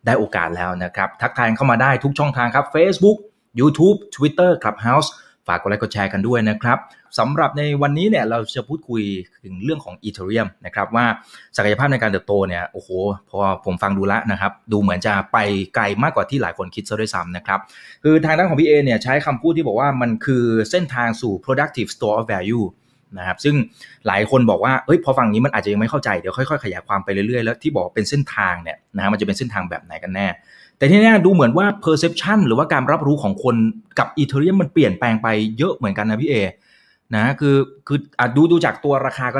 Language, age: Thai, 20-39